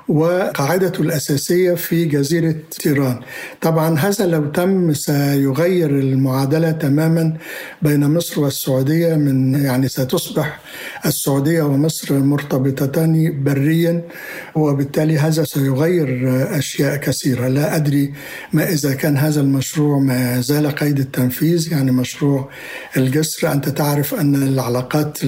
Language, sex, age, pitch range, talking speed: Arabic, male, 60-79, 135-160 Hz, 105 wpm